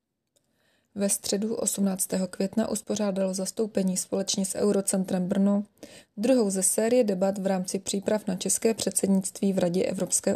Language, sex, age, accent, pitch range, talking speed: Czech, female, 20-39, native, 185-205 Hz, 135 wpm